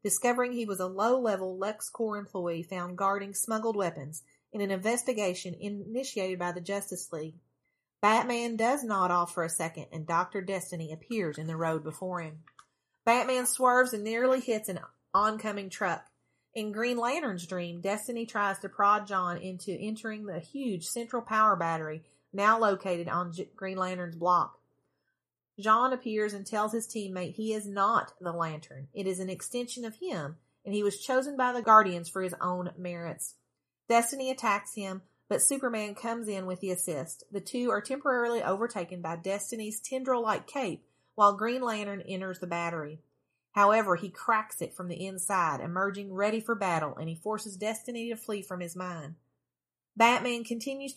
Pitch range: 180-225 Hz